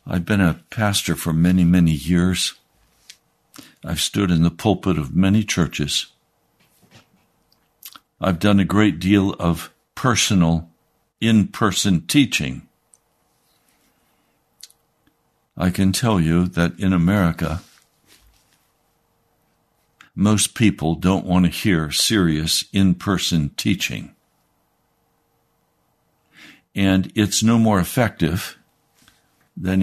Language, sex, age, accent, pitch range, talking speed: English, male, 60-79, American, 90-115 Hz, 95 wpm